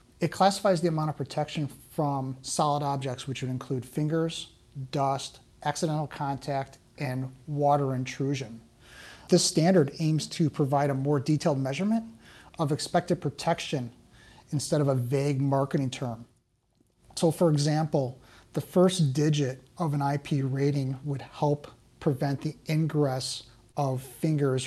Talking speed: 130 wpm